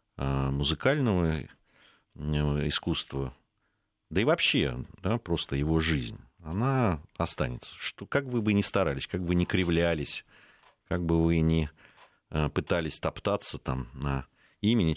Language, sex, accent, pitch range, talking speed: Russian, male, native, 75-95 Hz, 120 wpm